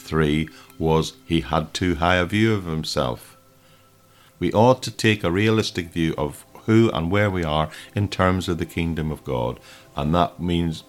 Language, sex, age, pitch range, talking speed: English, male, 50-69, 80-100 Hz, 180 wpm